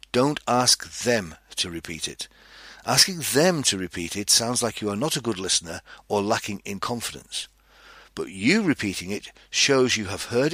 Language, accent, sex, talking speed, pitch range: English, British, male, 175 wpm, 95-130 Hz